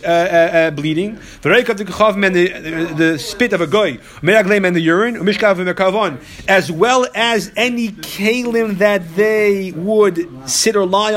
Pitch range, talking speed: 170-210 Hz, 125 wpm